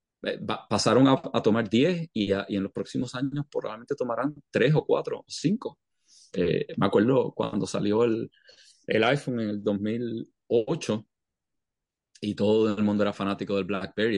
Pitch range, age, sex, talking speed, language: 100-135 Hz, 30-49, male, 150 wpm, English